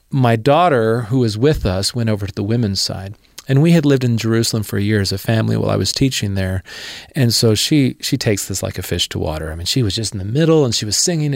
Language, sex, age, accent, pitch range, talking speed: English, male, 40-59, American, 105-135 Hz, 275 wpm